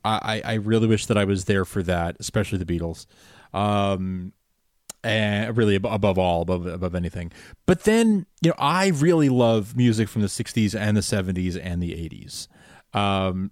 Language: English